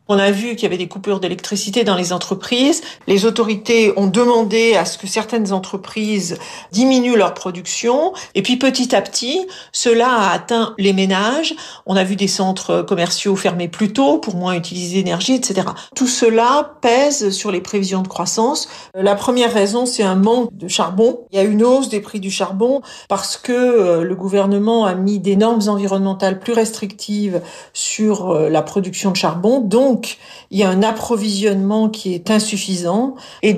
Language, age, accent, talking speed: French, 50-69, French, 180 wpm